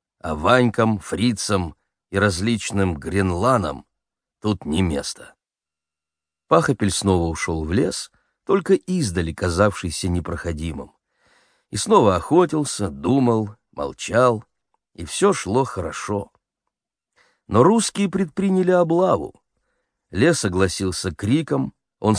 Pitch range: 95-145 Hz